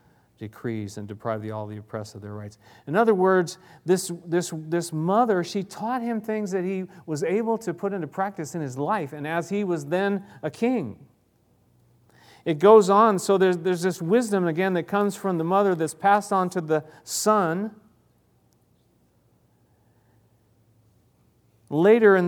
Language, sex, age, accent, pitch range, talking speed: English, male, 40-59, American, 135-185 Hz, 165 wpm